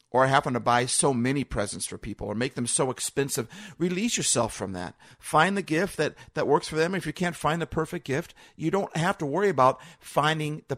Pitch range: 120-165 Hz